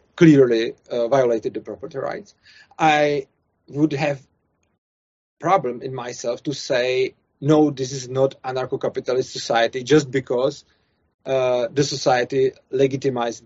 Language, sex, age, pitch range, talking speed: Czech, male, 30-49, 130-155 Hz, 115 wpm